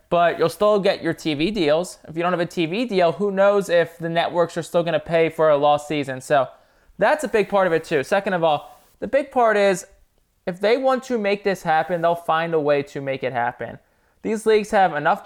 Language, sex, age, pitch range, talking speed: English, male, 20-39, 155-195 Hz, 245 wpm